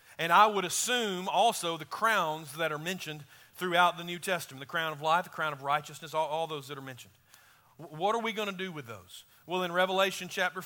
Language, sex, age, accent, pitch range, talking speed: English, male, 40-59, American, 155-200 Hz, 225 wpm